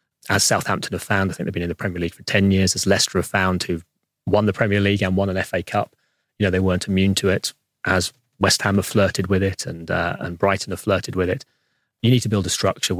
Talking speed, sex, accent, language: 265 wpm, male, British, English